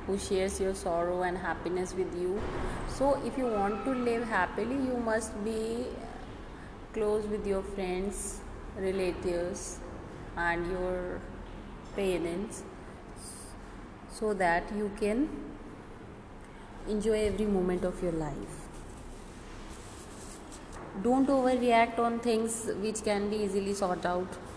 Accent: native